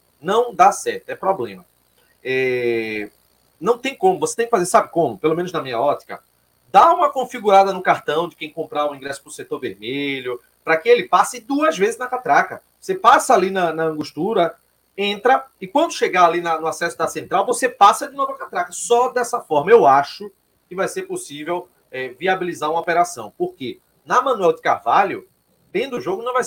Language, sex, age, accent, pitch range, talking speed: Portuguese, male, 30-49, Brazilian, 160-260 Hz, 195 wpm